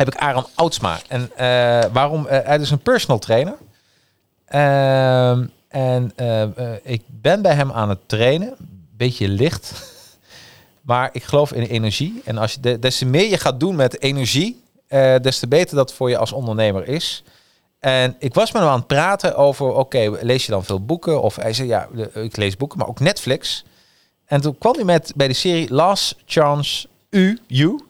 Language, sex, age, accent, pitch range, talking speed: Dutch, male, 40-59, Dutch, 115-145 Hz, 180 wpm